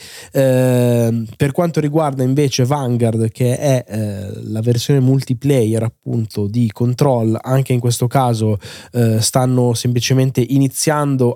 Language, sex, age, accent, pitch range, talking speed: Italian, male, 20-39, native, 115-130 Hz, 120 wpm